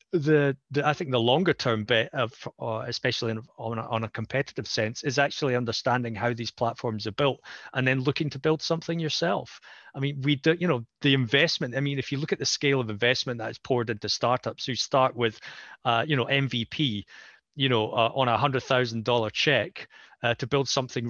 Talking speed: 215 wpm